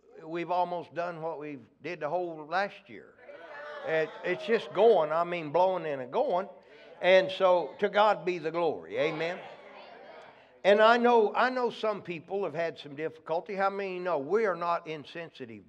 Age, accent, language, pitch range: 60-79, American, English, 145-195 Hz